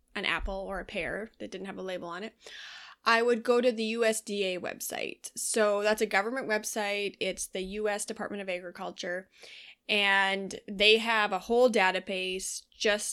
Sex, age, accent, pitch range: female, 20-39, American, 195-230 Hz